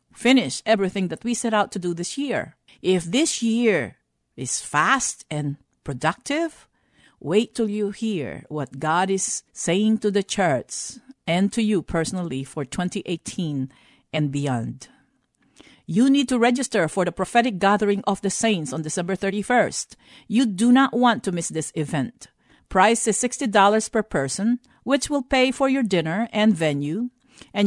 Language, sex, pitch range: English, female, 165-235 Hz